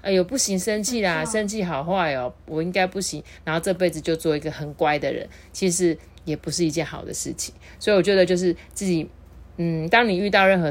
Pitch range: 155-210 Hz